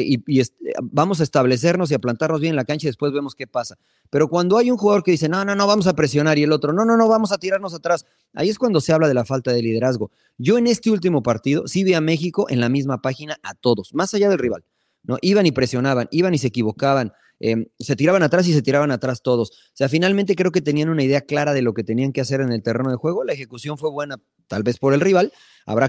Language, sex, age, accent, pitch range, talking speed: Spanish, male, 30-49, Mexican, 125-165 Hz, 270 wpm